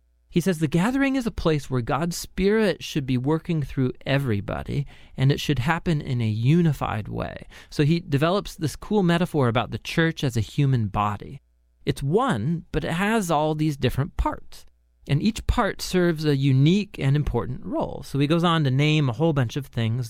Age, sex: 30-49, male